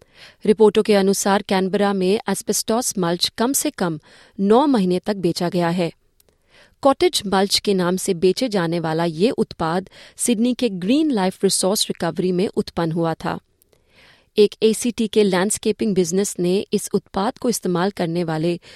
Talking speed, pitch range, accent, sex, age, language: 155 wpm, 185-235 Hz, native, female, 30-49, Hindi